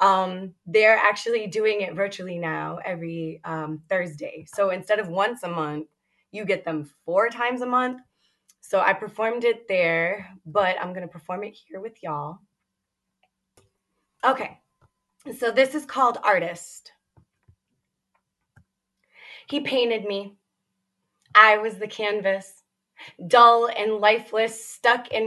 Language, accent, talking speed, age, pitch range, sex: English, American, 130 wpm, 20-39, 195-235 Hz, female